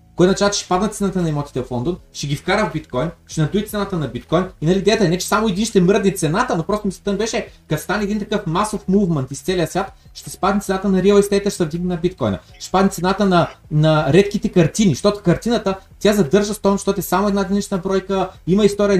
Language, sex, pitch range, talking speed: Bulgarian, male, 160-200 Hz, 225 wpm